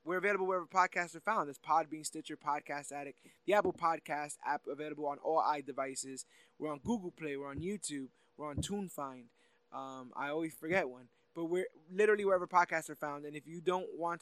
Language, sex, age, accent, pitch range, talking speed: English, male, 20-39, American, 150-190 Hz, 195 wpm